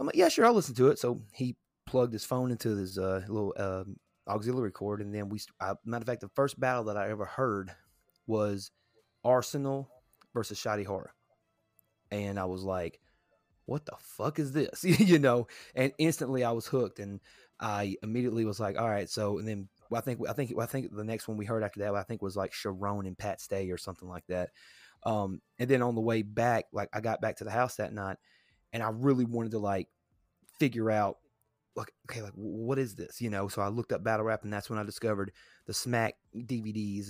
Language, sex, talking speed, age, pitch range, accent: English, male, 225 wpm, 30-49, 100-125 Hz, American